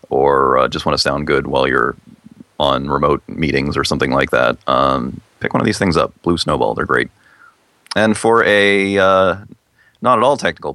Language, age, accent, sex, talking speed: English, 30-49, American, male, 180 wpm